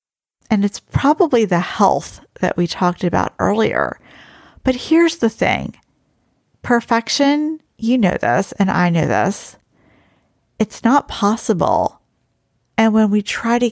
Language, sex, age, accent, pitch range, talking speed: English, female, 40-59, American, 180-240 Hz, 130 wpm